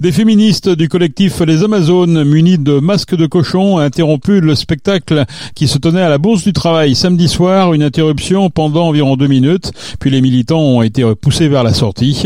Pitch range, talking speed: 120-160 Hz, 195 wpm